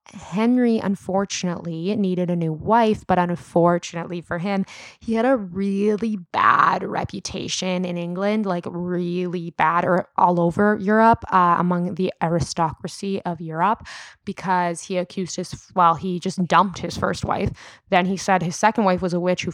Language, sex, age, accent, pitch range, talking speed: English, female, 20-39, American, 170-195 Hz, 160 wpm